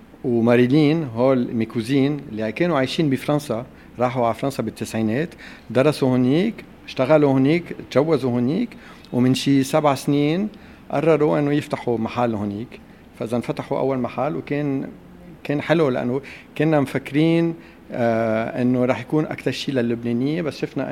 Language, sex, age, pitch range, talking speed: Arabic, male, 50-69, 115-145 Hz, 130 wpm